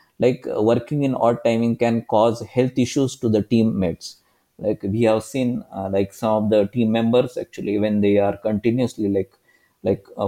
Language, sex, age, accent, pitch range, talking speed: English, male, 20-39, Indian, 105-125 Hz, 180 wpm